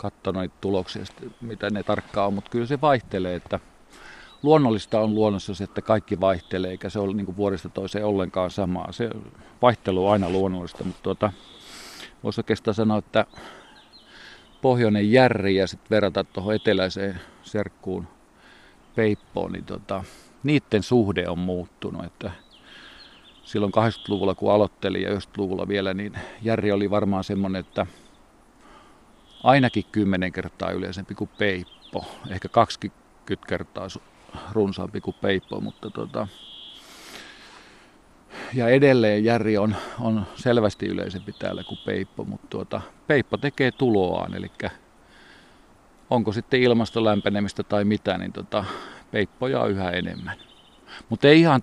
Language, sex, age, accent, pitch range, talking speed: Finnish, male, 40-59, native, 95-110 Hz, 130 wpm